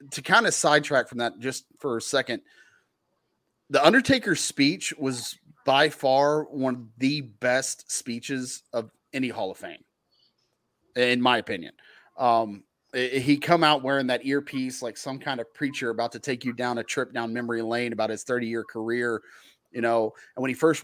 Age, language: 30-49, English